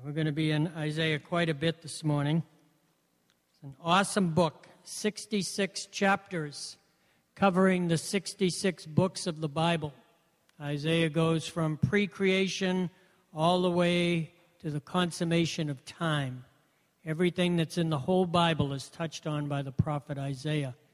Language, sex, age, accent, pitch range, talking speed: English, male, 60-79, American, 150-185 Hz, 145 wpm